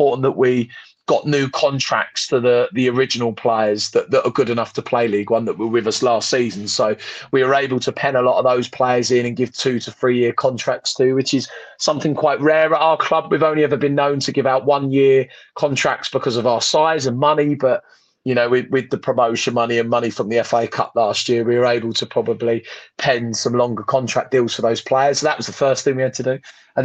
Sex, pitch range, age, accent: male, 125-150 Hz, 30-49, British